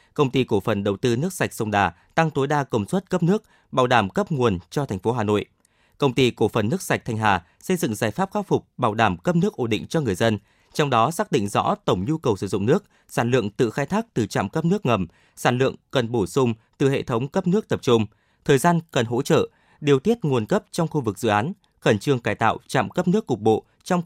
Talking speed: 265 wpm